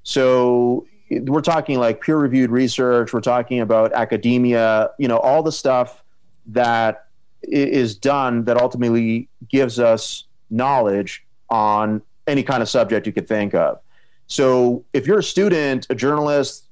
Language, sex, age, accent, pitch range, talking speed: English, male, 30-49, American, 115-145 Hz, 140 wpm